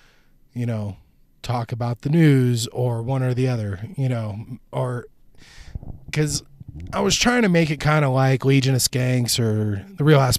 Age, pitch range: 20-39, 115-140 Hz